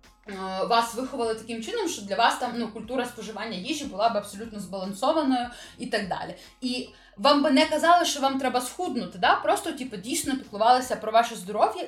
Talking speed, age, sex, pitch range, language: 180 wpm, 20-39, female, 205-255 Hz, Ukrainian